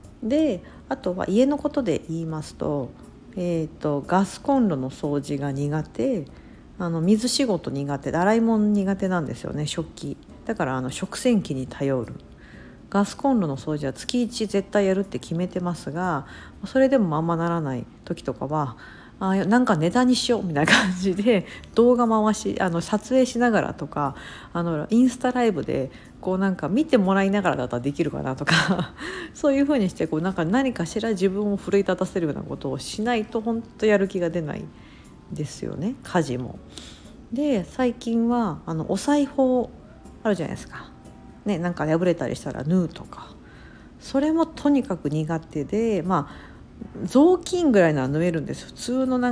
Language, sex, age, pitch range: Japanese, female, 50-69, 155-230 Hz